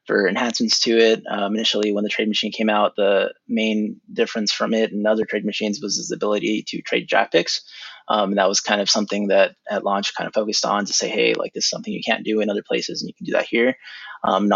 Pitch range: 100-110 Hz